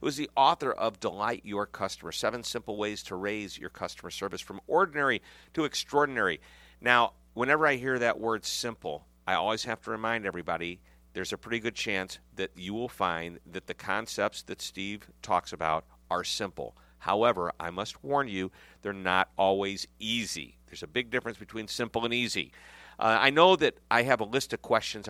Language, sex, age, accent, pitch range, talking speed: English, male, 50-69, American, 95-120 Hz, 185 wpm